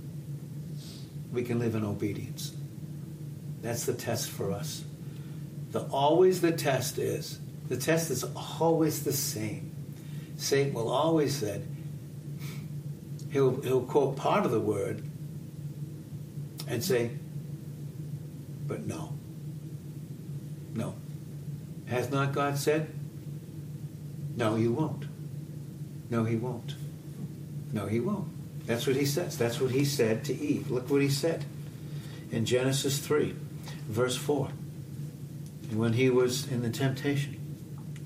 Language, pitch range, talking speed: English, 135-150 Hz, 120 wpm